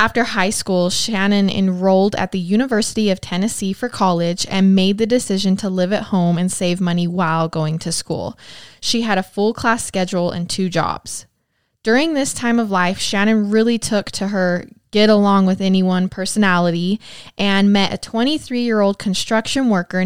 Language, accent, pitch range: English, American, 185-225 Hz